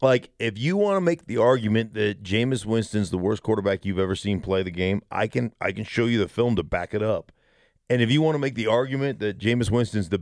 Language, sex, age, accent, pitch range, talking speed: English, male, 40-59, American, 100-125 Hz, 260 wpm